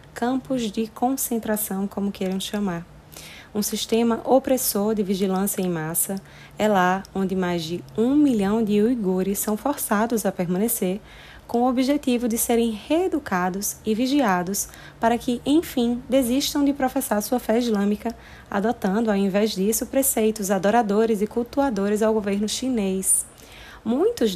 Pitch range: 195-240 Hz